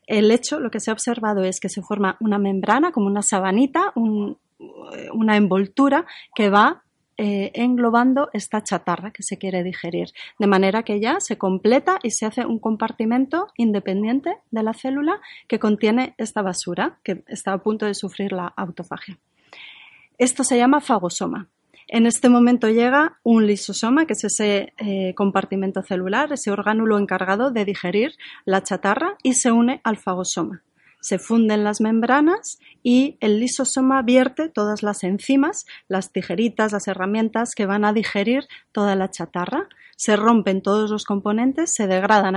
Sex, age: female, 30-49